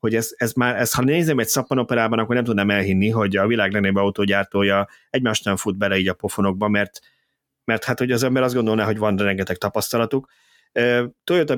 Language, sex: Hungarian, male